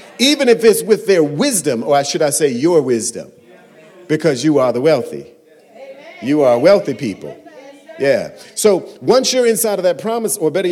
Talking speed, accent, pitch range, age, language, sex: 175 wpm, American, 165-230 Hz, 40-59, English, male